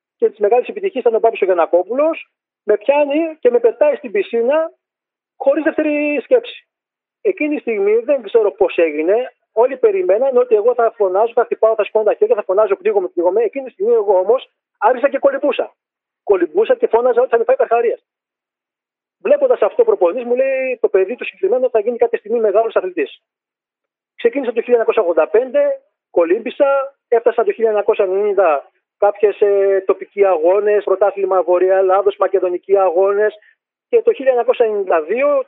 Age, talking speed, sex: 40-59, 155 wpm, male